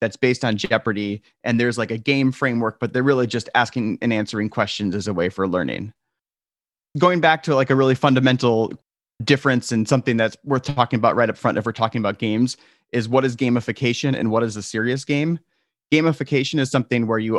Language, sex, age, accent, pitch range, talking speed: English, male, 30-49, American, 110-130 Hz, 205 wpm